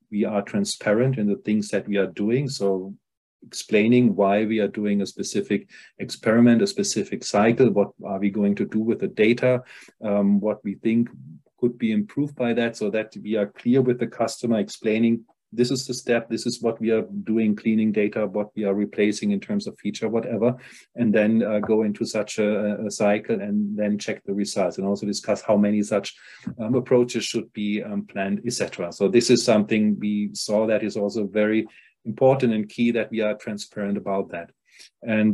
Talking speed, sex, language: 200 wpm, male, English